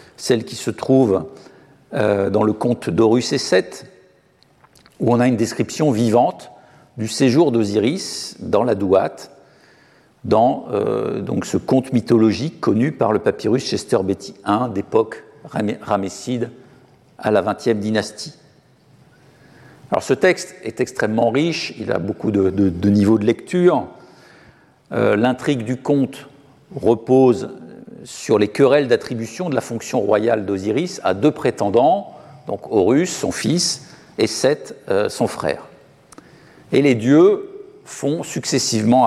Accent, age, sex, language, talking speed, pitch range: French, 50-69, male, French, 130 wpm, 110-140 Hz